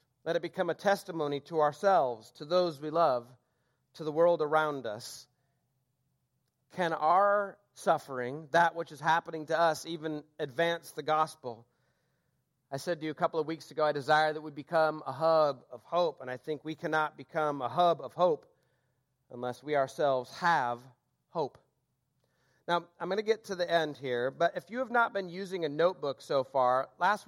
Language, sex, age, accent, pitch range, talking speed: English, male, 40-59, American, 145-185 Hz, 185 wpm